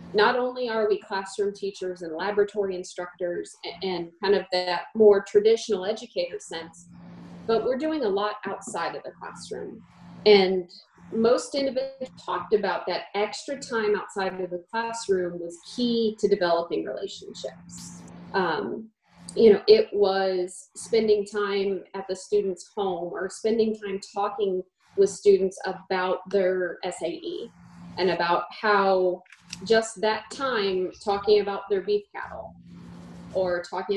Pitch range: 185-220 Hz